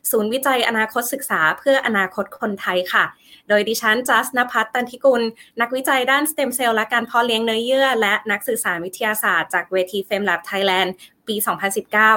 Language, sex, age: Thai, female, 20-39